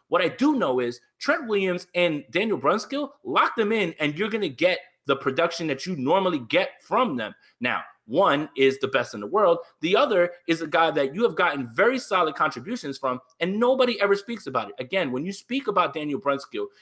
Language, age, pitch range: English, 30-49, 140-205 Hz